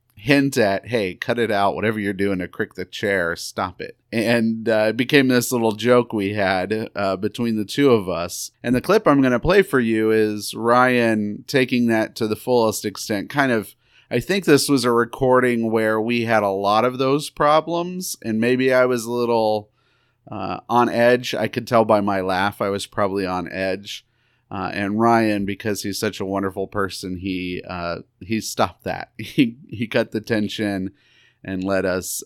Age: 30-49